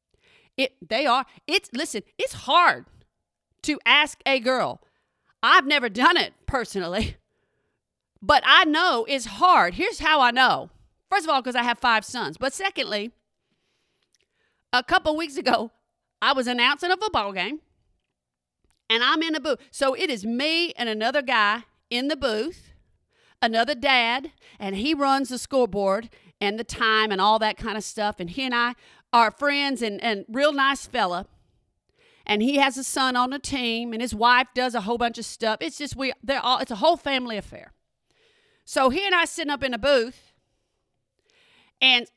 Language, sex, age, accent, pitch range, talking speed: English, female, 40-59, American, 235-310 Hz, 175 wpm